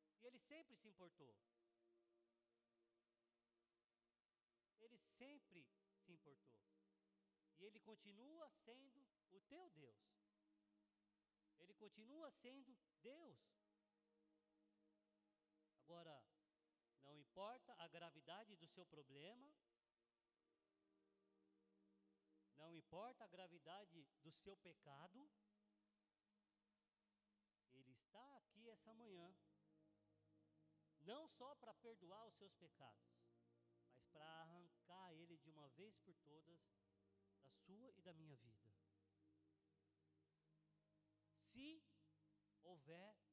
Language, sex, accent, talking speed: Portuguese, male, Brazilian, 90 wpm